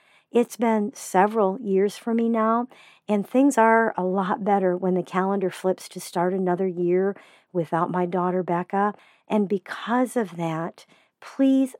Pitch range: 180-220 Hz